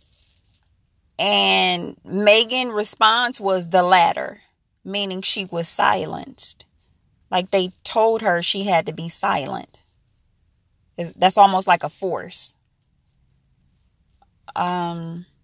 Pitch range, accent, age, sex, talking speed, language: 120-190 Hz, American, 20-39, female, 95 wpm, English